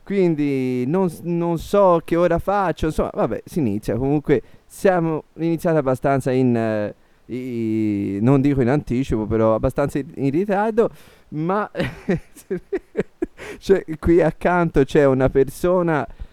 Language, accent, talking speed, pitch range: Italian, native, 120 wpm, 115-170 Hz